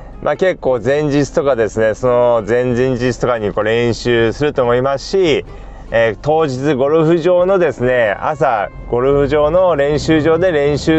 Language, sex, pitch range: Japanese, male, 125-170 Hz